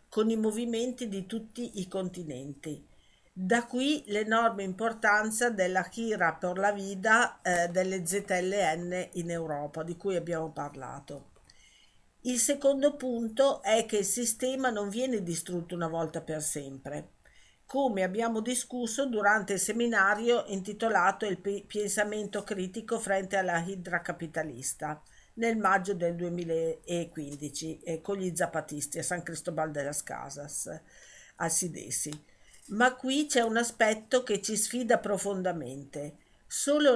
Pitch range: 170-225 Hz